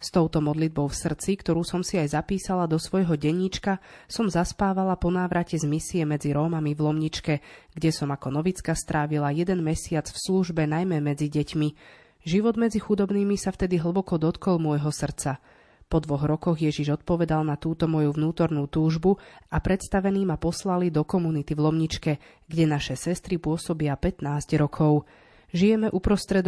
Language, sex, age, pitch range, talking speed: Slovak, female, 30-49, 150-180 Hz, 160 wpm